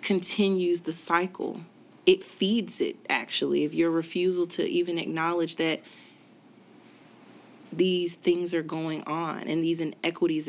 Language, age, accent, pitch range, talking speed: English, 20-39, American, 150-175 Hz, 125 wpm